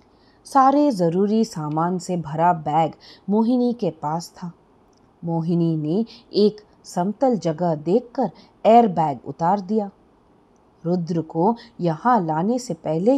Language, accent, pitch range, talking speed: English, Indian, 165-225 Hz, 120 wpm